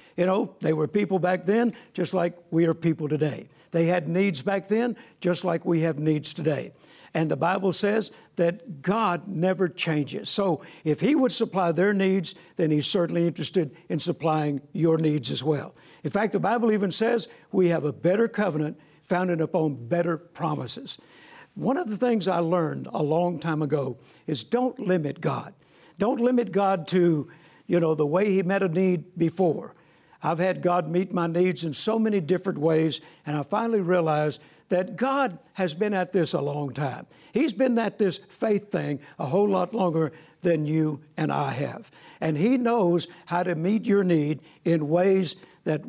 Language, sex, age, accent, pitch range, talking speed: English, male, 60-79, American, 155-200 Hz, 185 wpm